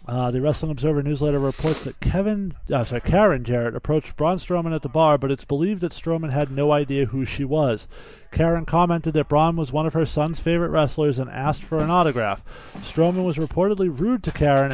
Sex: male